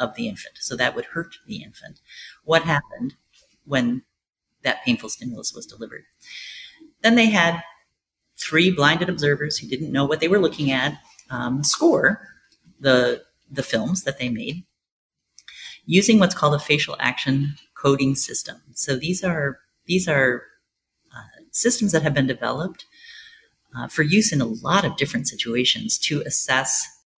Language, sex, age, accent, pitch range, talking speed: English, female, 40-59, American, 140-185 Hz, 150 wpm